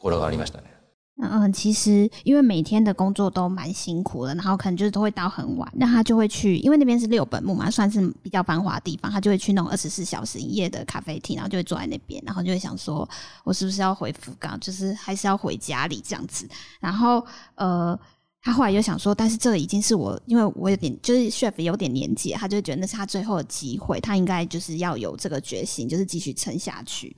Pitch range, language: 175-220 Hz, Chinese